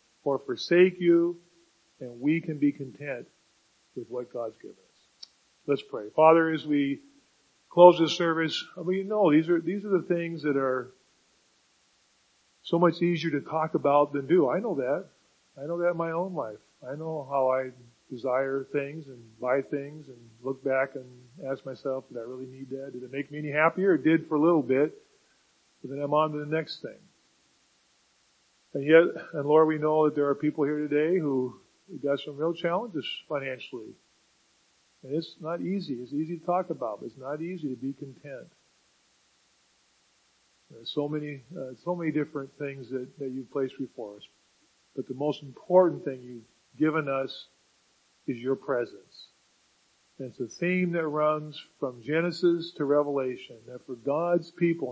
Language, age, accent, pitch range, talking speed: English, 40-59, American, 130-165 Hz, 180 wpm